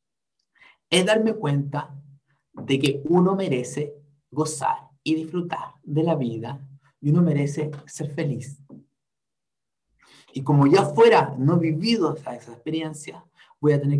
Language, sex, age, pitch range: Spanish, male, 30-49, 140-175 Hz